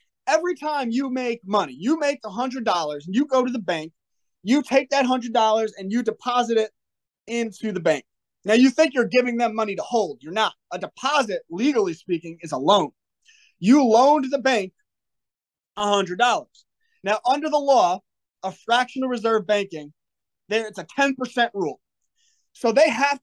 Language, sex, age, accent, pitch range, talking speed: English, male, 20-39, American, 205-265 Hz, 165 wpm